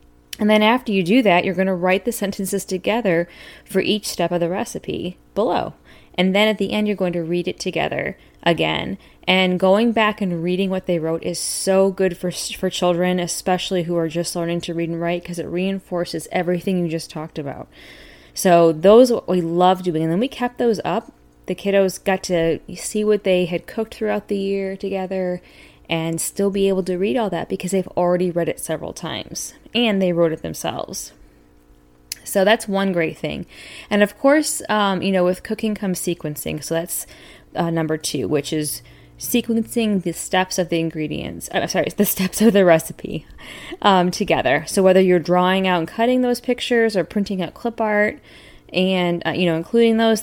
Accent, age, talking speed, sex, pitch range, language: American, 10-29, 195 wpm, female, 170-205 Hz, English